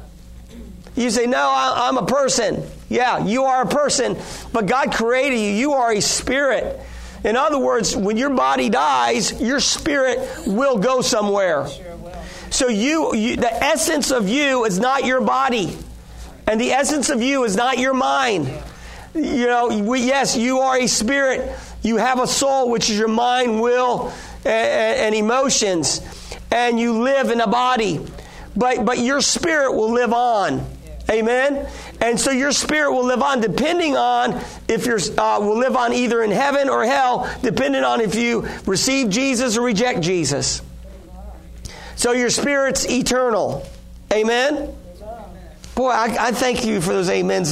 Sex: male